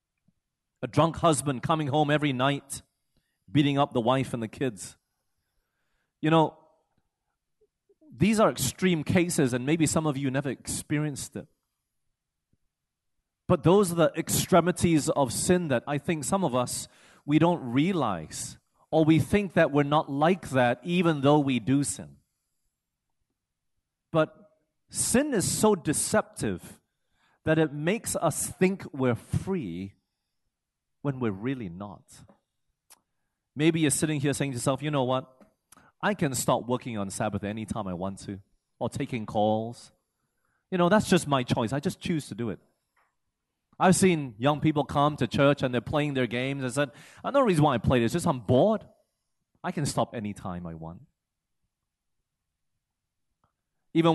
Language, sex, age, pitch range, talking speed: English, male, 30-49, 125-165 Hz, 155 wpm